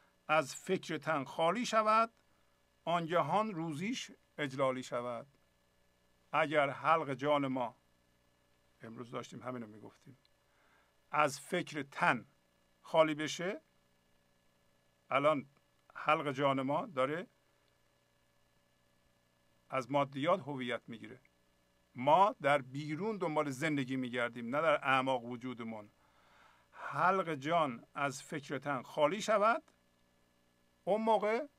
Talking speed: 100 wpm